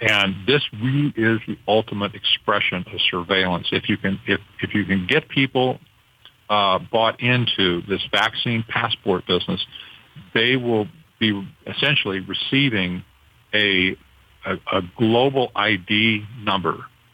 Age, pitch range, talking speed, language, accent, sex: 50-69, 100-120 Hz, 125 wpm, English, American, male